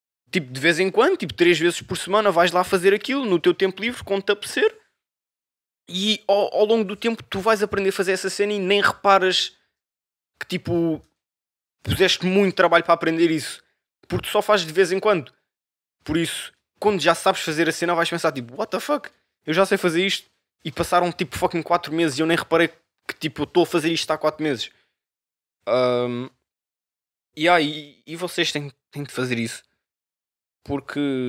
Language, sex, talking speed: Portuguese, male, 195 wpm